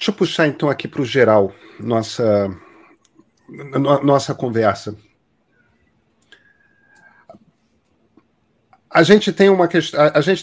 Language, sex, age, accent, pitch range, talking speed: Portuguese, male, 40-59, Brazilian, 115-145 Hz, 80 wpm